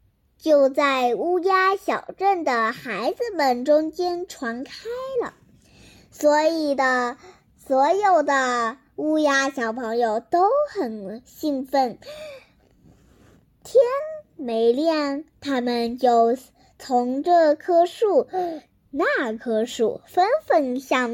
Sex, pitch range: male, 260-380 Hz